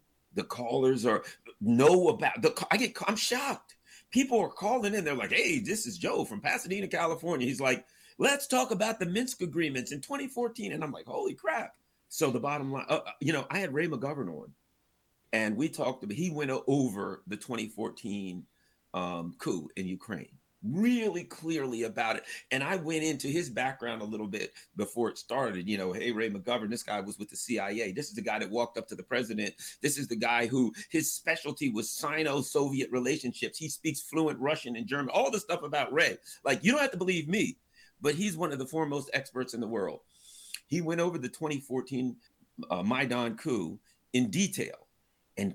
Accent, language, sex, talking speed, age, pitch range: American, English, male, 195 wpm, 40-59, 120-200 Hz